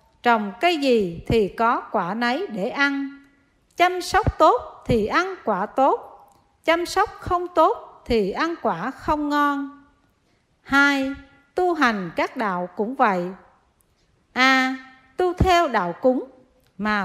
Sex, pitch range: female, 220-315 Hz